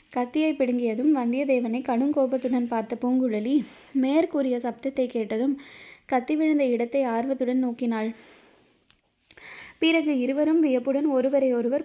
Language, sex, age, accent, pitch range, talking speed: Tamil, female, 20-39, native, 240-275 Hz, 100 wpm